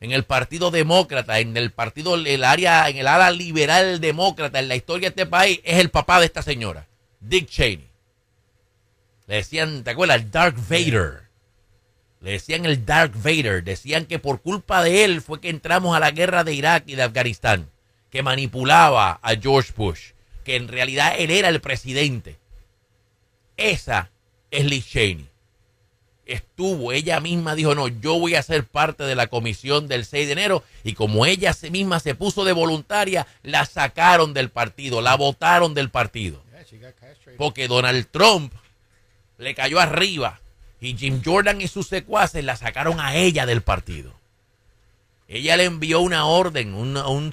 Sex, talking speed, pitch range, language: male, 165 wpm, 110-165 Hz, Spanish